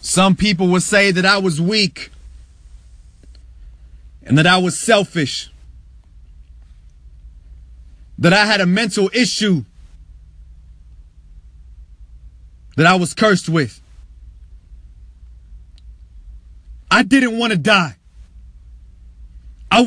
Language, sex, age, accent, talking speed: English, male, 30-49, American, 90 wpm